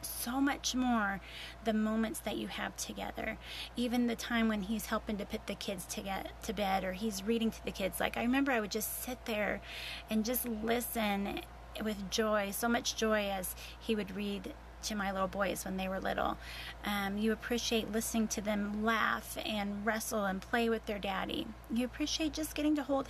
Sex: female